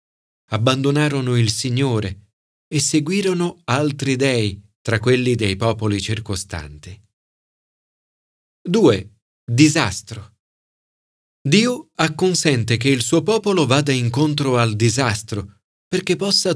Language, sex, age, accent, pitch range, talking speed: Italian, male, 40-59, native, 105-155 Hz, 95 wpm